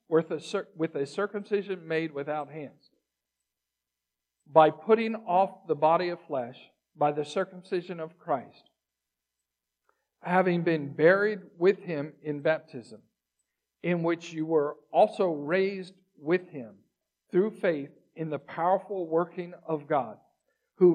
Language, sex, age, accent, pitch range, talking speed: English, male, 50-69, American, 150-190 Hz, 125 wpm